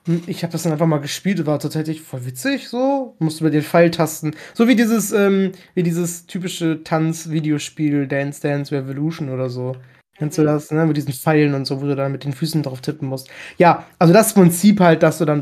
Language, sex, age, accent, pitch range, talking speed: German, male, 20-39, German, 150-180 Hz, 220 wpm